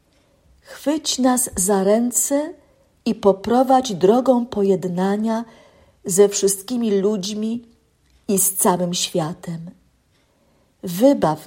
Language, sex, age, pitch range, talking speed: Polish, female, 50-69, 180-225 Hz, 85 wpm